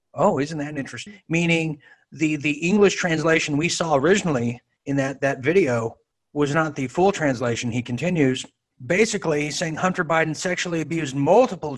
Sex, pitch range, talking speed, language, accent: male, 135-160 Hz, 155 wpm, English, American